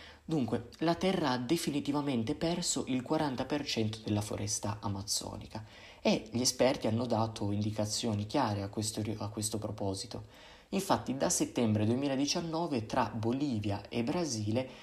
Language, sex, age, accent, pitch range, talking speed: Italian, male, 20-39, native, 110-150 Hz, 120 wpm